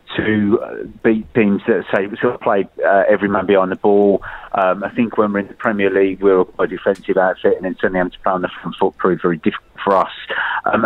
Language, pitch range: English, 90-105 Hz